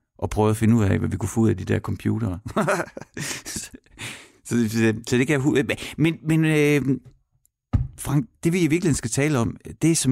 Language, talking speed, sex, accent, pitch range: Danish, 200 wpm, male, native, 105-140 Hz